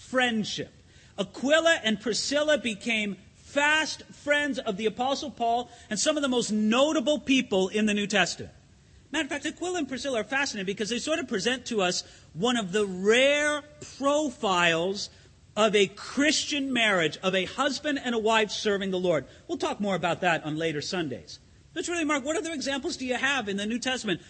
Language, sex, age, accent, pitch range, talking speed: English, male, 40-59, American, 215-290 Hz, 190 wpm